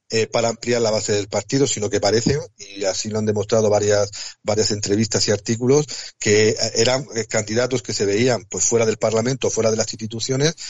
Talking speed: 195 wpm